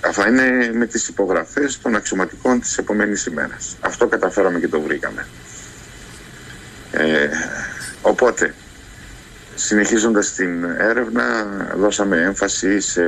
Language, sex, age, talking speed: Greek, male, 50-69, 100 wpm